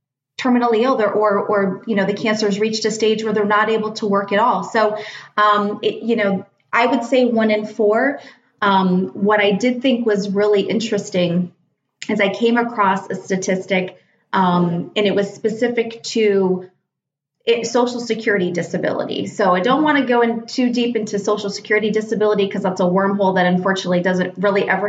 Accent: American